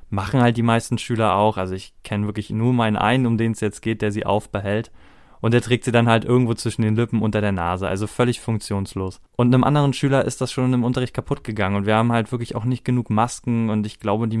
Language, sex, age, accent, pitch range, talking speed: German, male, 20-39, German, 105-125 Hz, 255 wpm